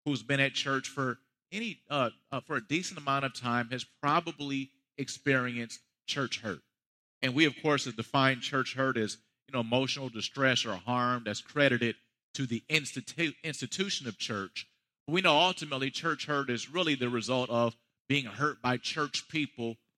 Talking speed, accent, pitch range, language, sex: 170 wpm, American, 120-145 Hz, English, male